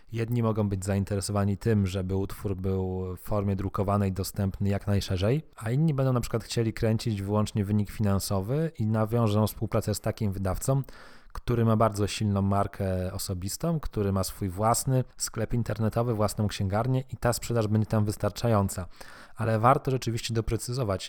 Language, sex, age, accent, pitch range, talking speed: Polish, male, 20-39, native, 100-115 Hz, 155 wpm